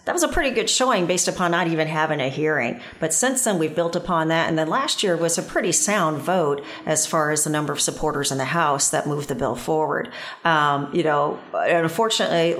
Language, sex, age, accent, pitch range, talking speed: English, female, 40-59, American, 150-185 Hz, 230 wpm